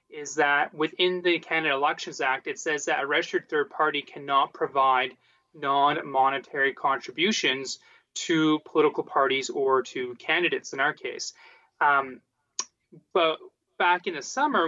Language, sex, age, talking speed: English, male, 30-49, 135 wpm